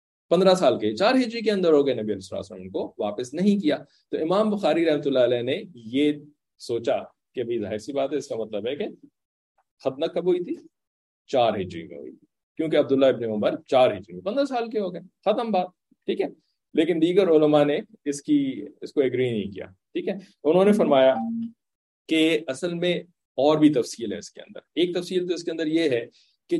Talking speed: 175 wpm